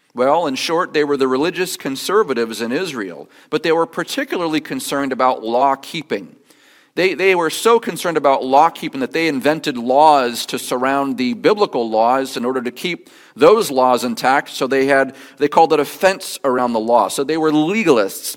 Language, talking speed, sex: English, 185 wpm, male